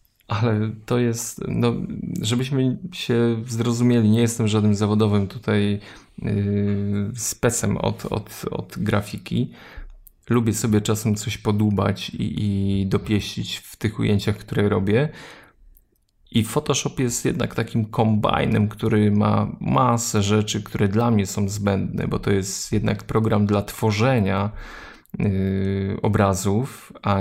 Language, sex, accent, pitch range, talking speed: Polish, male, native, 100-115 Hz, 125 wpm